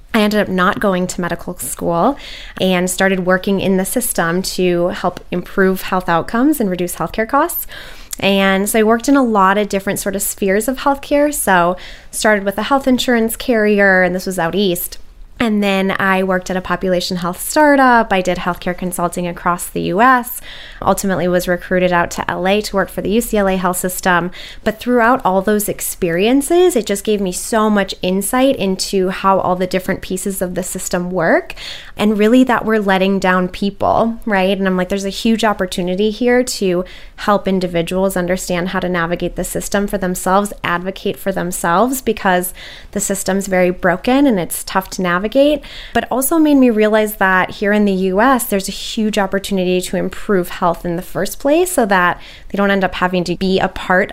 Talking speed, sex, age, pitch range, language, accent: 190 wpm, female, 20-39, 180-215 Hz, English, American